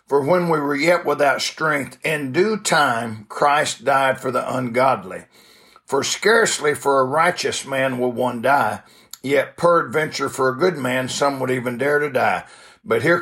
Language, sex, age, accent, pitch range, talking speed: English, male, 60-79, American, 130-165 Hz, 170 wpm